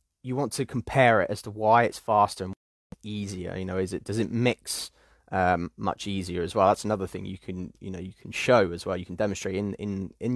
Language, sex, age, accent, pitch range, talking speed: English, male, 20-39, British, 90-115 Hz, 245 wpm